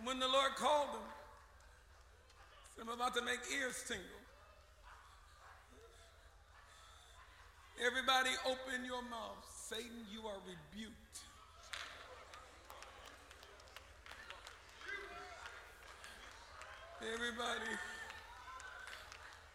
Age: 50-69